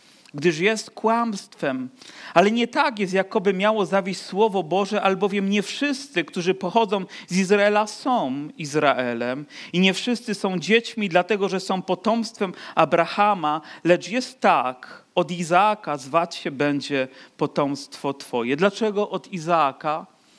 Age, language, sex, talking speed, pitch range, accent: 40-59, Polish, male, 130 wpm, 180-230 Hz, native